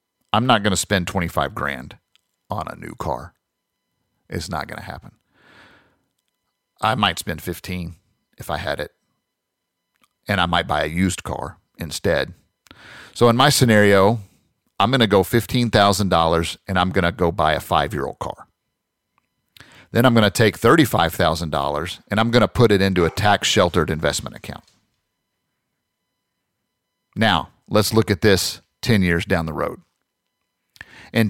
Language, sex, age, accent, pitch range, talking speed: English, male, 50-69, American, 90-115 Hz, 150 wpm